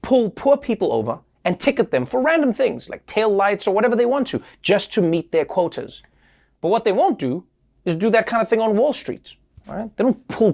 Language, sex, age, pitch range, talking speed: English, male, 30-49, 155-240 Hz, 230 wpm